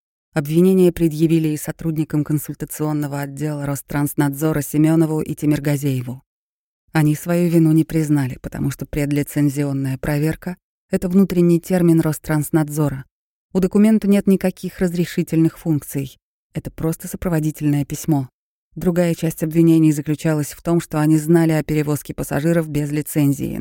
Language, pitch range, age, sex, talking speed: Russian, 150-175 Hz, 20-39, female, 120 wpm